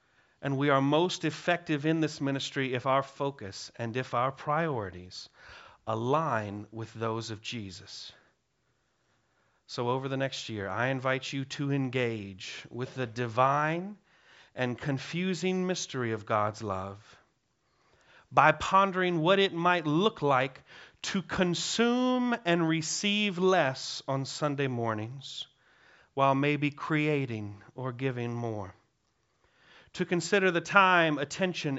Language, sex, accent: English, male, American